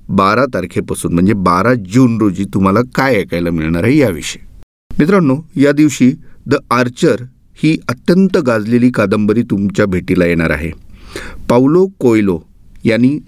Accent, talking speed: native, 125 wpm